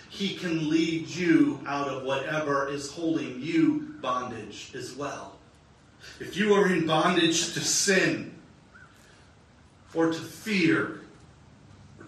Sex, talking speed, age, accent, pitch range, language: male, 120 wpm, 40-59, American, 165-230 Hz, English